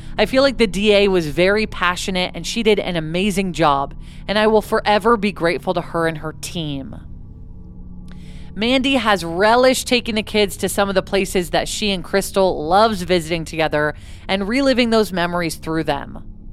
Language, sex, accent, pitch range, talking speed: English, female, American, 160-215 Hz, 180 wpm